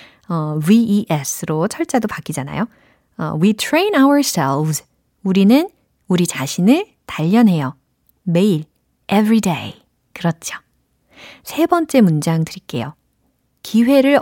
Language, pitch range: Korean, 165-265 Hz